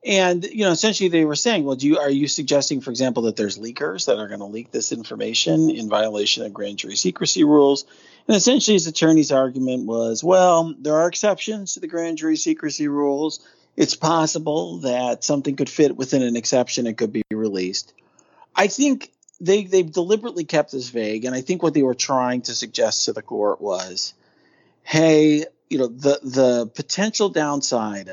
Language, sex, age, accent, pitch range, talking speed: English, male, 40-59, American, 115-165 Hz, 190 wpm